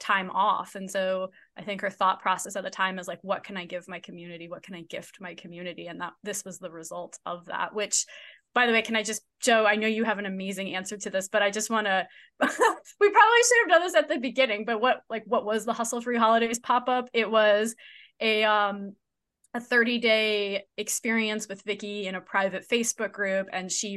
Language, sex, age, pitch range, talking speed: English, female, 20-39, 185-220 Hz, 230 wpm